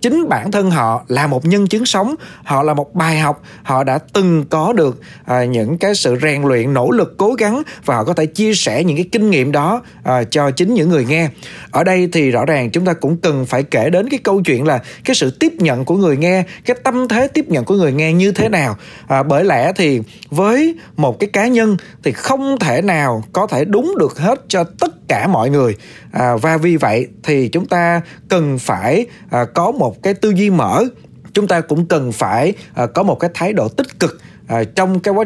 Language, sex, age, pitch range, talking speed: Vietnamese, male, 20-39, 145-195 Hz, 220 wpm